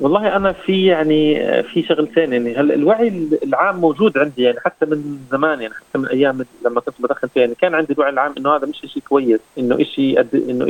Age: 30-49